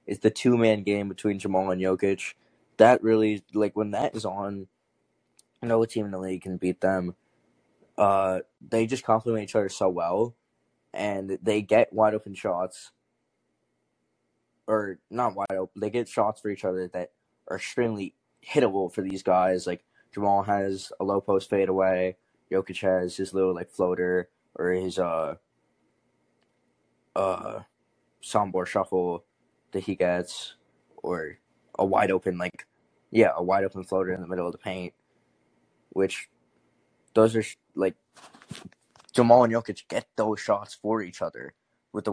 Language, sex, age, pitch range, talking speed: English, male, 20-39, 90-105 Hz, 150 wpm